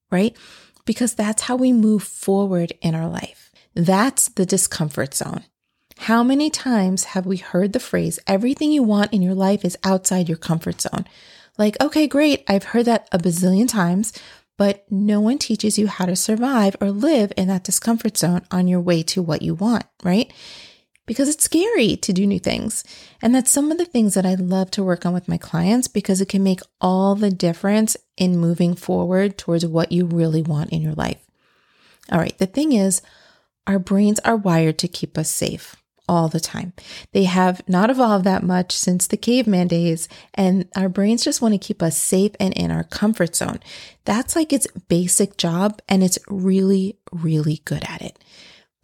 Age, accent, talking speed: 30-49, American, 190 wpm